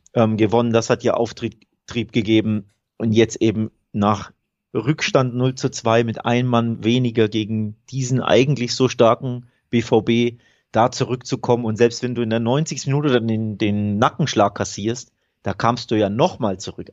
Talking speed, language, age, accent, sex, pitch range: 165 wpm, German, 30-49, German, male, 110-125 Hz